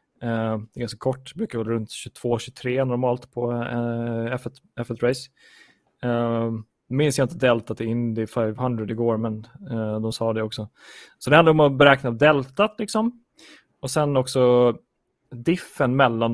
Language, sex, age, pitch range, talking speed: Swedish, male, 20-39, 115-130 Hz, 160 wpm